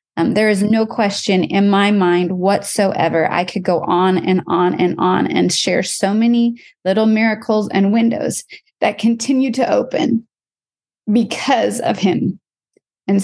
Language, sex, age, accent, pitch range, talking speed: English, female, 30-49, American, 200-240 Hz, 150 wpm